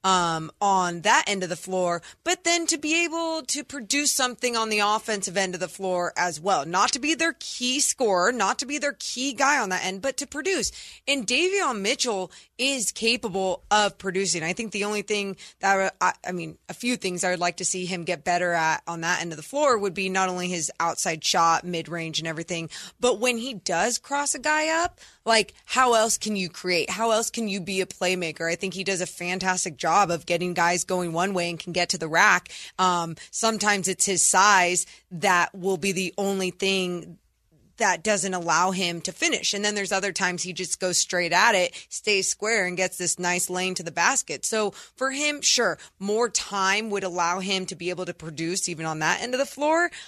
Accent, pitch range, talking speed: American, 180-235 Hz, 220 wpm